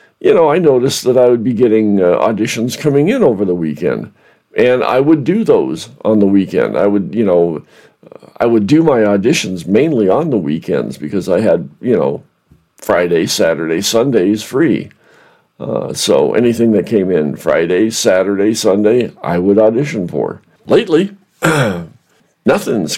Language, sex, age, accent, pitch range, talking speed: English, male, 50-69, American, 100-155 Hz, 160 wpm